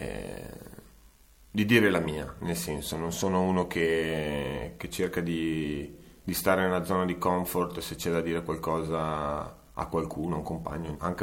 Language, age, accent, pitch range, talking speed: Italian, 30-49, native, 75-90 Hz, 165 wpm